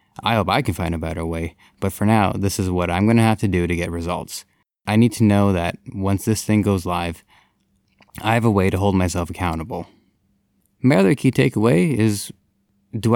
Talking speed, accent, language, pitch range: 215 wpm, American, English, 90-105 Hz